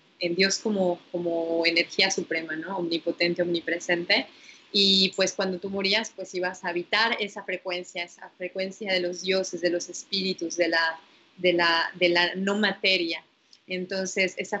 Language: Spanish